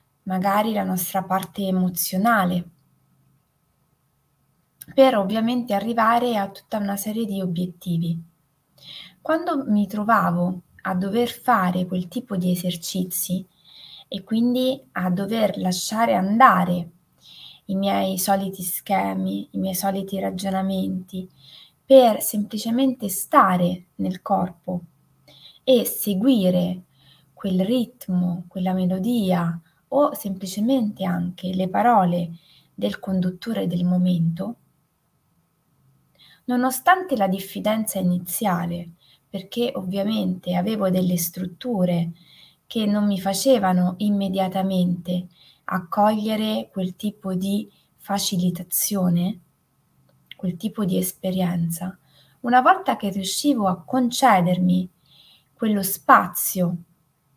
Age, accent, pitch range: 20-39, native, 180-210 Hz